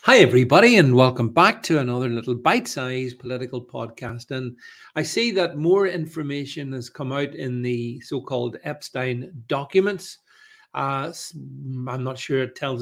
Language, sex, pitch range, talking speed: English, male, 125-145 Hz, 145 wpm